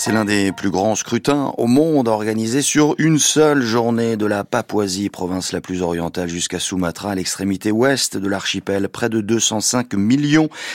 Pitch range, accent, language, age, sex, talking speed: 95-135 Hz, French, French, 30-49, male, 175 wpm